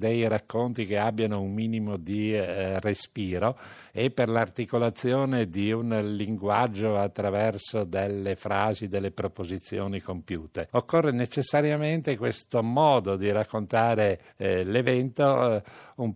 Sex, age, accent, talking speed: male, 50-69, native, 110 wpm